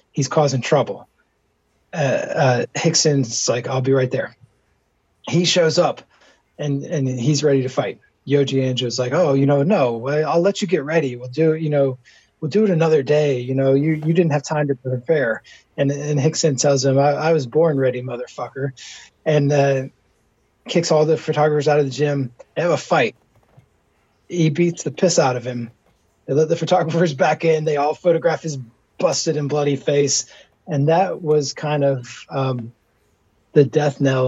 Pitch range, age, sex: 130-155 Hz, 20-39, male